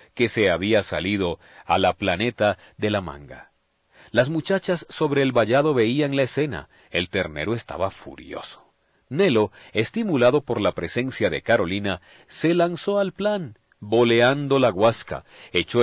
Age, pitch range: 40-59, 110-155 Hz